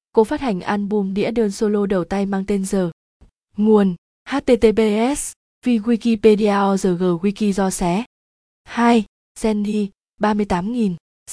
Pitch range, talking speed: 195-230 Hz, 120 wpm